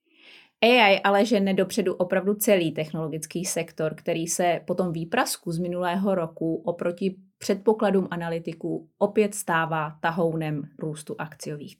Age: 30-49